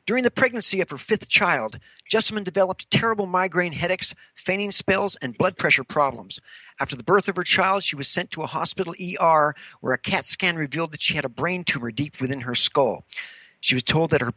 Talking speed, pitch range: 215 wpm, 145-190 Hz